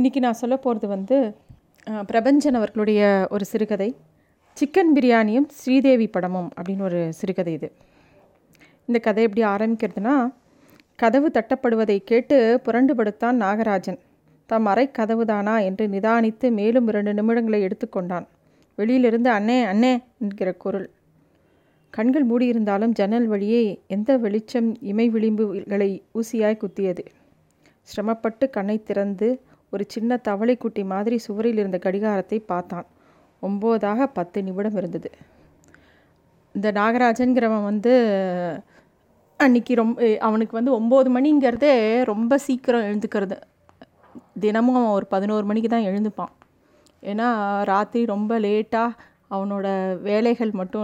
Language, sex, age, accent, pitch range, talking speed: Tamil, female, 30-49, native, 200-235 Hz, 105 wpm